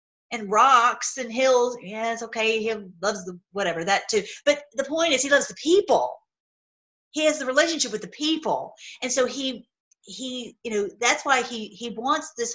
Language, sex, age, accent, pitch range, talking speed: English, female, 40-59, American, 205-260 Hz, 190 wpm